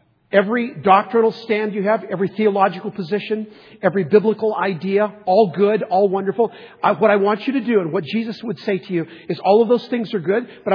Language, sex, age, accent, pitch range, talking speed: English, male, 50-69, American, 165-215 Hz, 200 wpm